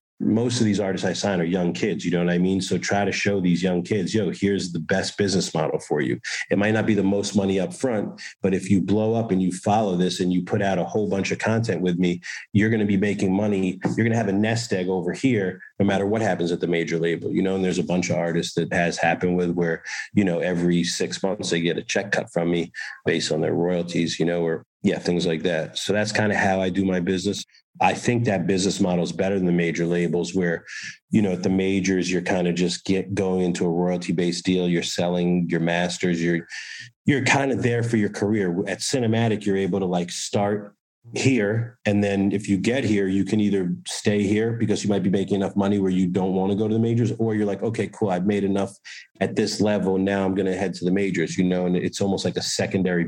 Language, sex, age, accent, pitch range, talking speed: English, male, 40-59, American, 90-100 Hz, 255 wpm